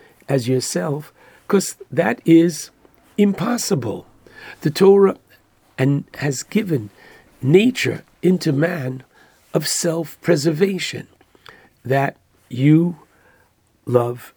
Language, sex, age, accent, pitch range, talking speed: English, male, 60-79, American, 130-170 Hz, 80 wpm